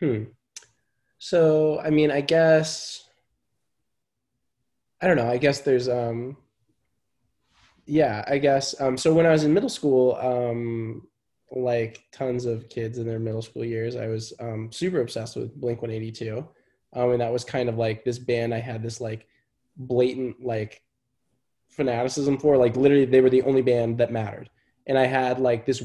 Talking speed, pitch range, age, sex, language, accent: 165 wpm, 115-135 Hz, 20-39, male, English, American